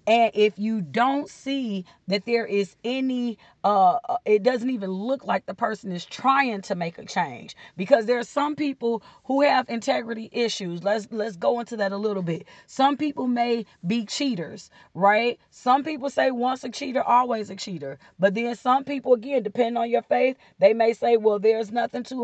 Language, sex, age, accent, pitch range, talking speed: English, female, 40-59, American, 200-245 Hz, 190 wpm